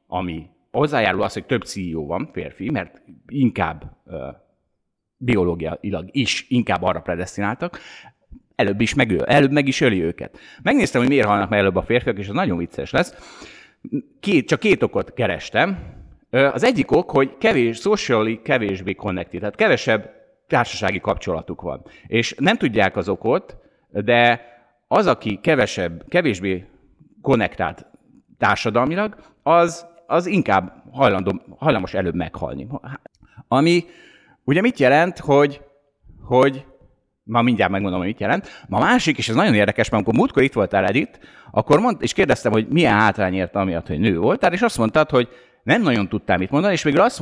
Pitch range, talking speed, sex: 95-140 Hz, 155 wpm, male